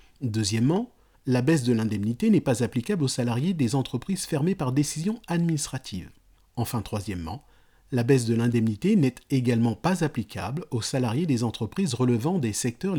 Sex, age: male, 40-59